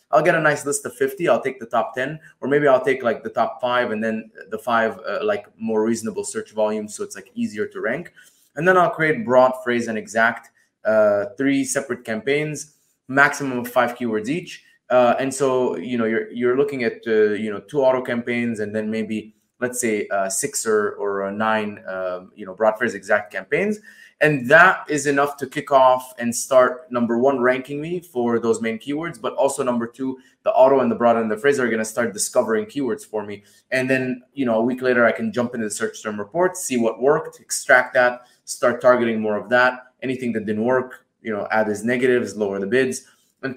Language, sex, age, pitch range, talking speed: English, male, 20-39, 110-140 Hz, 225 wpm